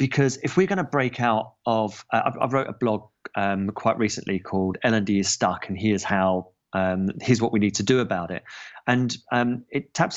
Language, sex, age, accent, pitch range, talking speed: English, male, 30-49, British, 110-140 Hz, 220 wpm